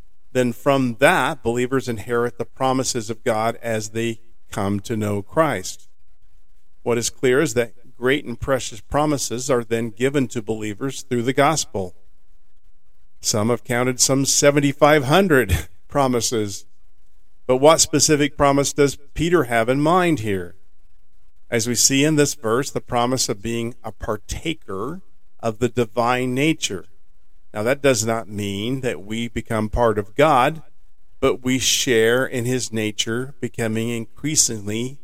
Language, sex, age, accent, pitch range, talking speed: English, male, 50-69, American, 105-130 Hz, 140 wpm